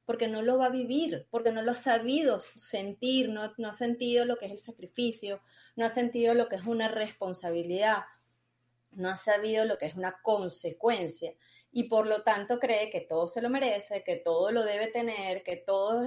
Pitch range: 190-245 Hz